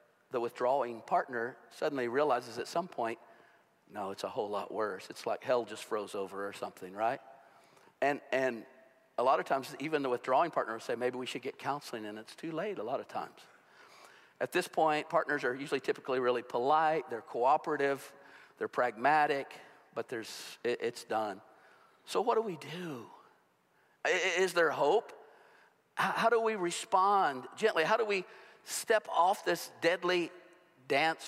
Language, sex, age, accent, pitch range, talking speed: English, male, 50-69, American, 125-175 Hz, 170 wpm